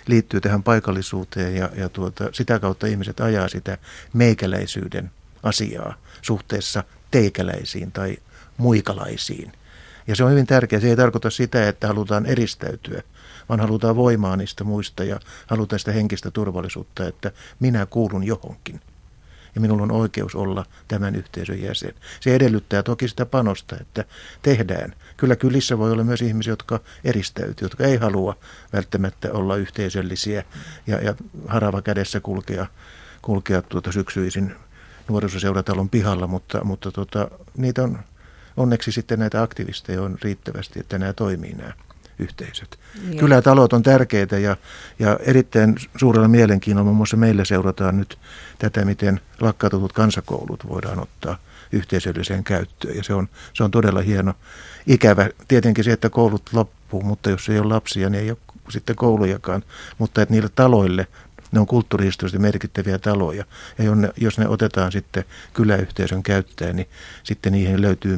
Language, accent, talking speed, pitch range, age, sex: Finnish, native, 140 wpm, 95-110 Hz, 50-69, male